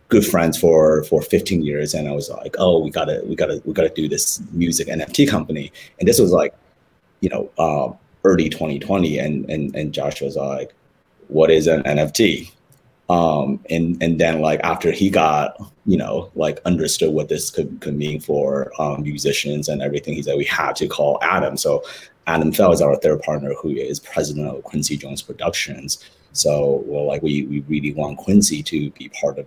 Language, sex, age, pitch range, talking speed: English, male, 30-49, 75-85 Hz, 195 wpm